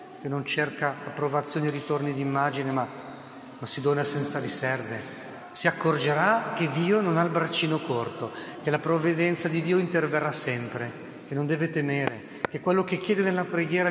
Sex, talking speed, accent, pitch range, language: male, 170 wpm, native, 145-185 Hz, Italian